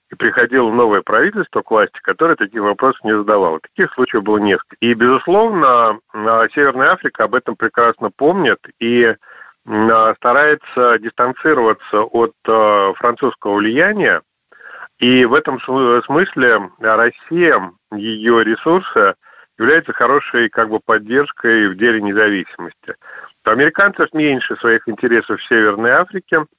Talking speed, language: 110 wpm, Russian